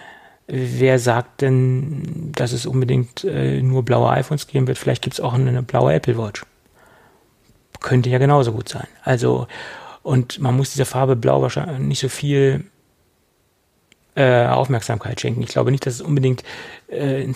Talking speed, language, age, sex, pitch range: 155 wpm, German, 40-59, male, 120-140 Hz